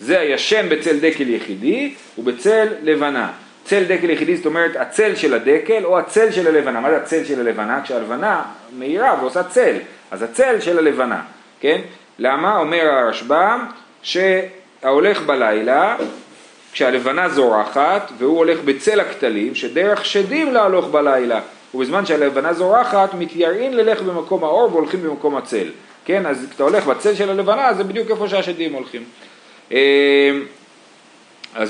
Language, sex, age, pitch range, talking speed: Hebrew, male, 40-59, 150-195 Hz, 125 wpm